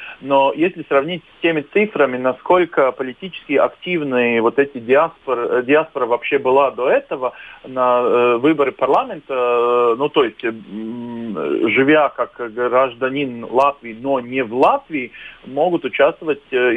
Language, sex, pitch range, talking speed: Russian, male, 125-170 Hz, 120 wpm